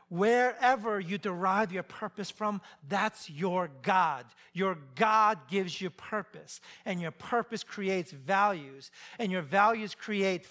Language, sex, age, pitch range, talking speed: English, male, 40-59, 140-205 Hz, 130 wpm